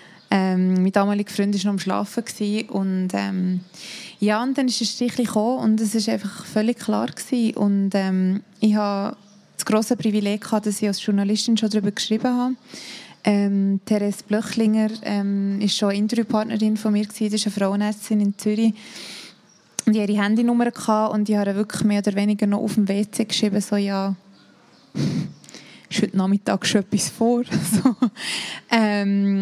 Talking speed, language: 165 wpm, German